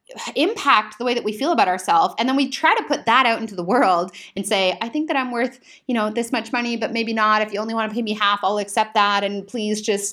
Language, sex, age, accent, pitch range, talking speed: English, female, 20-39, American, 195-260 Hz, 285 wpm